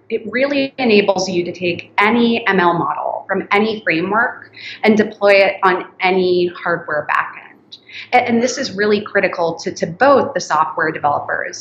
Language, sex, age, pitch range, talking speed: English, female, 30-49, 170-205 Hz, 160 wpm